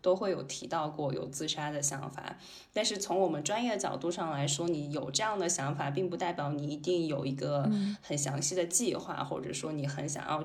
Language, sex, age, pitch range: Chinese, female, 10-29, 145-180 Hz